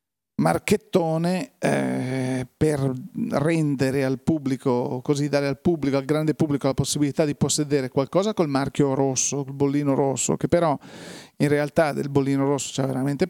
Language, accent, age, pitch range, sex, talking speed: Italian, native, 40-59, 140-165 Hz, male, 150 wpm